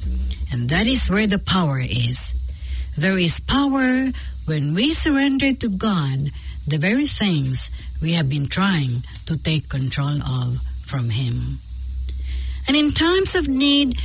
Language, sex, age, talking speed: English, female, 60-79, 140 wpm